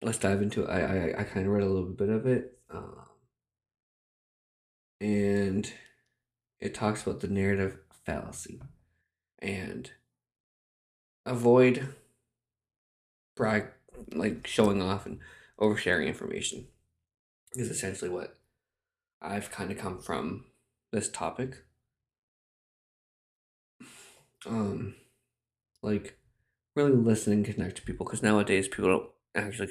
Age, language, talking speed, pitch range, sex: 20-39, English, 110 wpm, 100-120 Hz, male